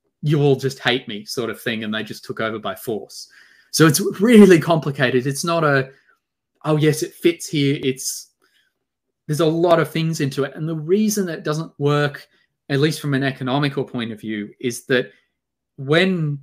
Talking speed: 190 wpm